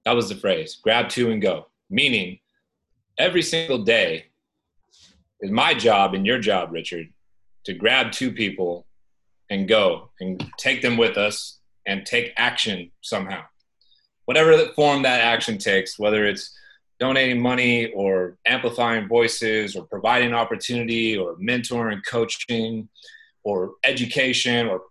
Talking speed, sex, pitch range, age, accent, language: 135 wpm, male, 115-150 Hz, 30-49, American, English